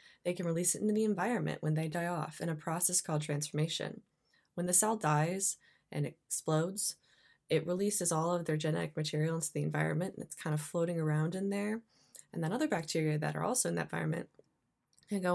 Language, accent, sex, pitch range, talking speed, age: English, American, female, 150-180 Hz, 205 wpm, 20-39